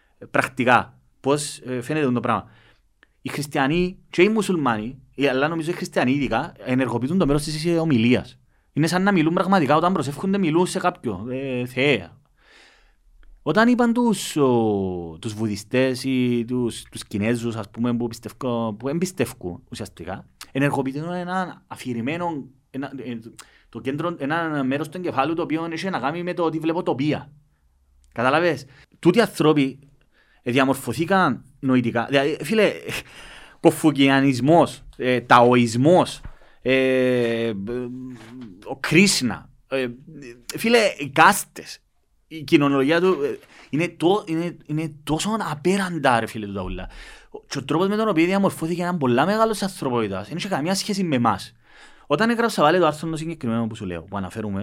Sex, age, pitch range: male, 30-49, 120-170 Hz